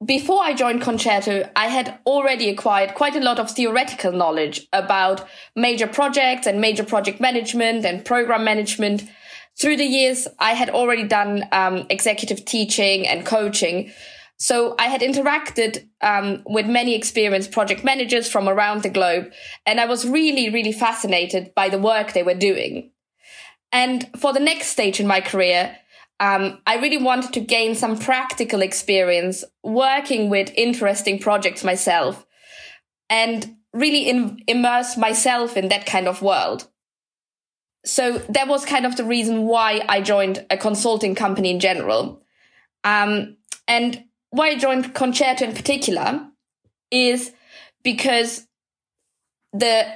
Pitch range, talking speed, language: 200-250 Hz, 145 wpm, English